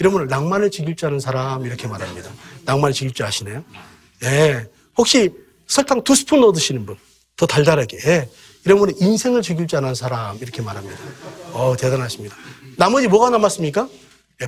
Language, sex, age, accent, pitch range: Korean, male, 40-59, native, 140-220 Hz